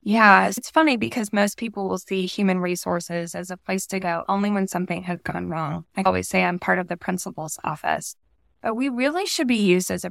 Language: English